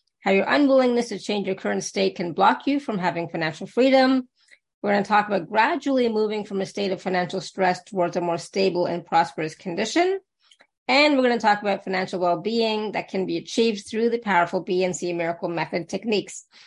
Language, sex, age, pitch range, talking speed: English, female, 30-49, 185-225 Hz, 195 wpm